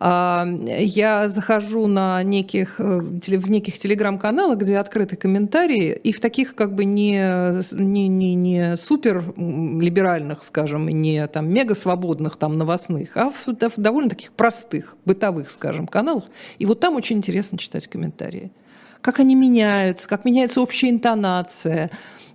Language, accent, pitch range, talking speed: Russian, native, 180-225 Hz, 135 wpm